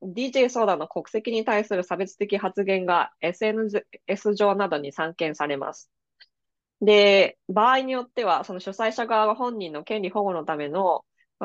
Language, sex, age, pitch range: Japanese, female, 20-39, 180-230 Hz